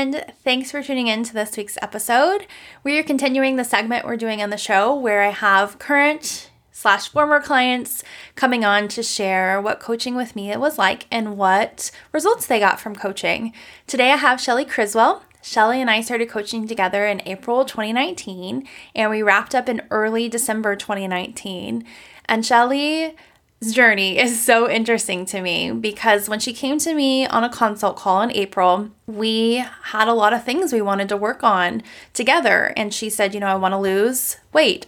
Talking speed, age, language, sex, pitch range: 185 wpm, 10-29, English, female, 200-250 Hz